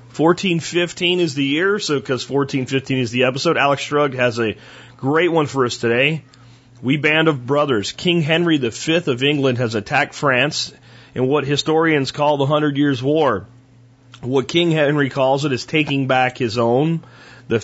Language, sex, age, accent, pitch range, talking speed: English, male, 40-59, American, 130-155 Hz, 170 wpm